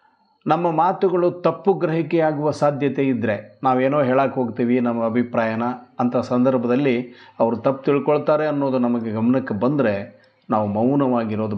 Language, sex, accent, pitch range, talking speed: Kannada, male, native, 120-155 Hz, 115 wpm